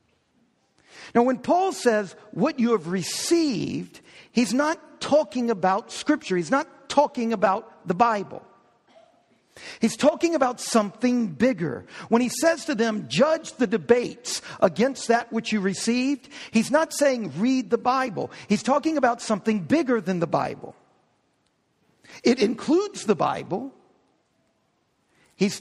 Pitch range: 205-275 Hz